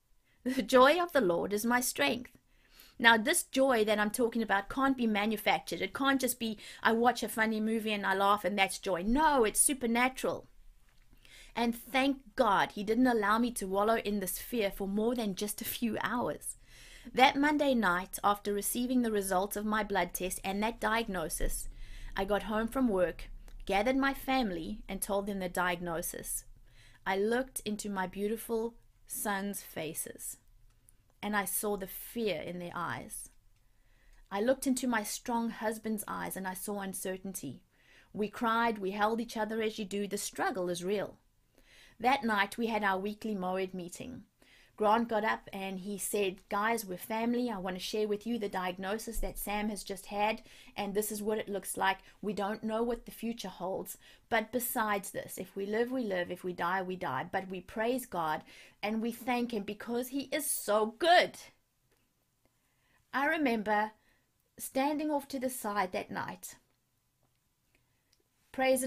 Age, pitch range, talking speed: 30-49, 190-235 Hz, 175 wpm